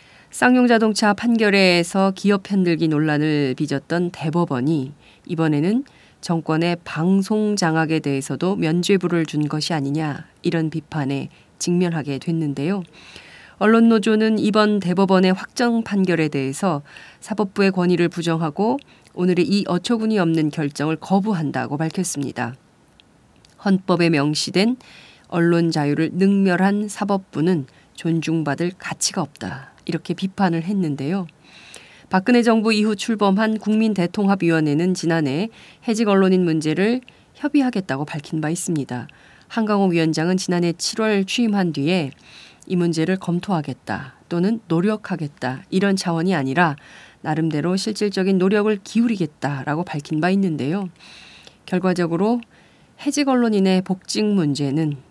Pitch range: 160-200 Hz